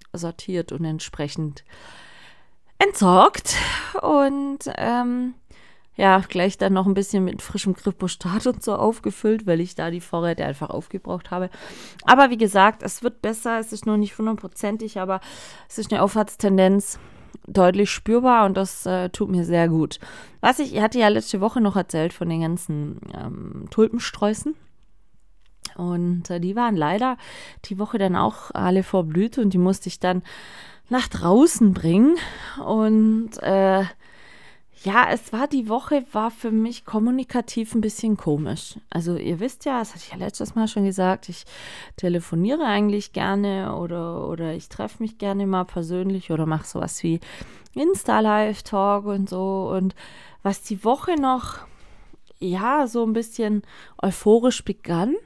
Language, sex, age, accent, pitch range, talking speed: German, female, 30-49, German, 185-230 Hz, 150 wpm